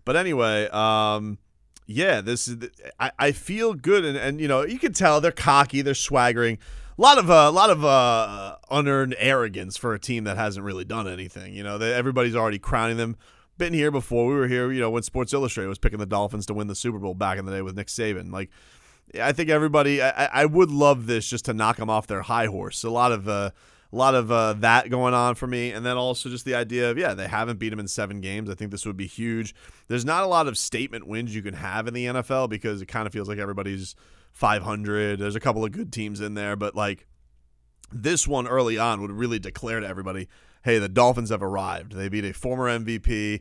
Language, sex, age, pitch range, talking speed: English, male, 30-49, 100-125 Hz, 240 wpm